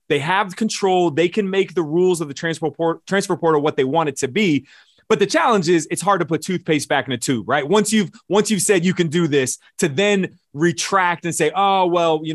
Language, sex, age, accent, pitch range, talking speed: English, male, 30-49, American, 135-175 Hz, 245 wpm